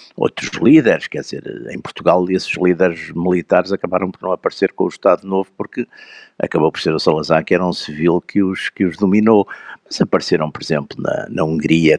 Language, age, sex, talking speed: Portuguese, 50-69, male, 190 wpm